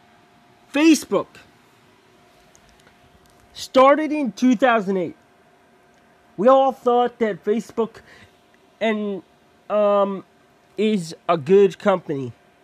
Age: 30-49